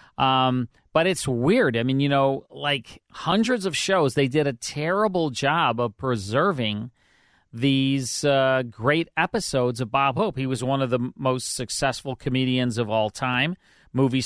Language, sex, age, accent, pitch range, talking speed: English, male, 40-59, American, 125-155 Hz, 160 wpm